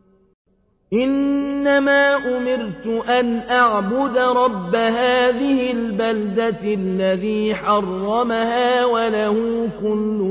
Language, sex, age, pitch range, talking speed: Arabic, male, 40-59, 210-245 Hz, 65 wpm